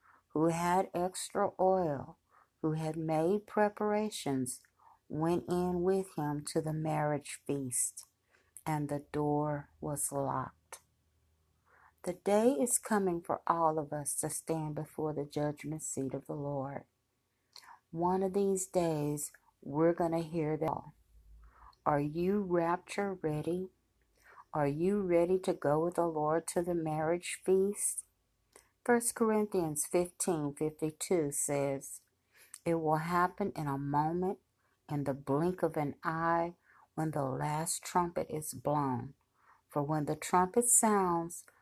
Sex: female